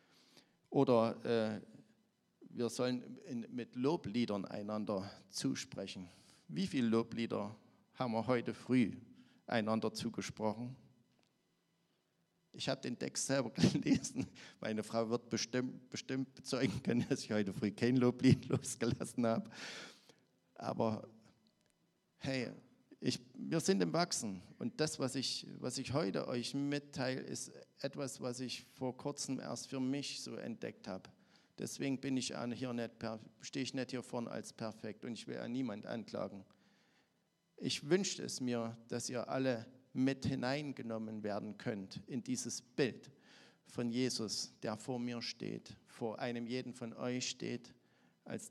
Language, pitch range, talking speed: German, 115-135 Hz, 140 wpm